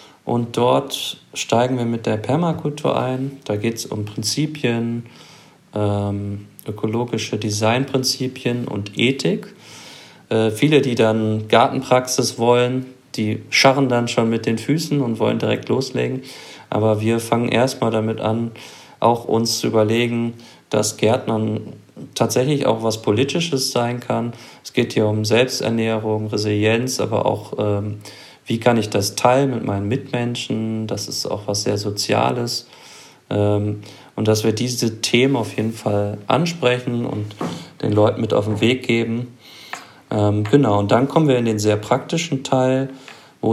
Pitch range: 105-125 Hz